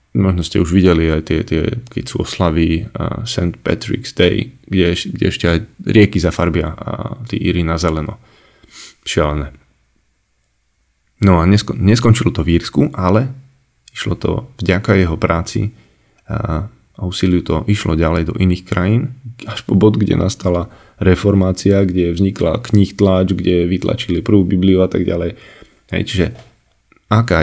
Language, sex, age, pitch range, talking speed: Slovak, male, 20-39, 85-105 Hz, 145 wpm